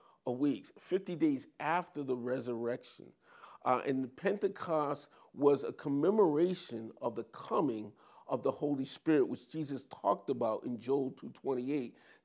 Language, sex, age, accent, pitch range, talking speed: English, male, 40-59, American, 130-170 Hz, 130 wpm